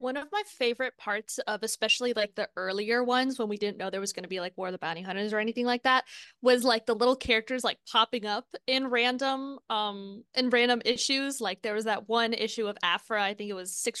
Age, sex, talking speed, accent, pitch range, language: 20-39, female, 245 wpm, American, 210-255 Hz, English